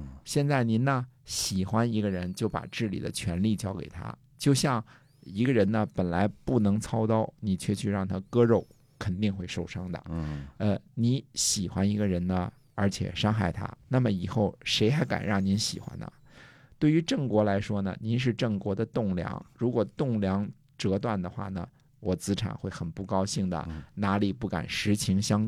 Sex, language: male, Chinese